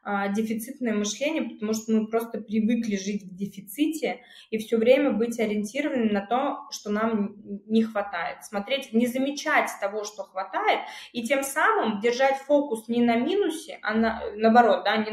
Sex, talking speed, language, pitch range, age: female, 155 wpm, Russian, 215-265 Hz, 20-39